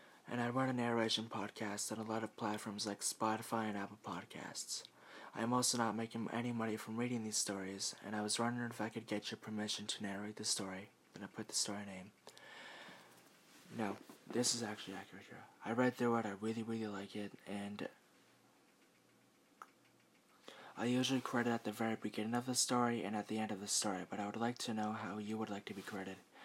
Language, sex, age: English, male, 20-39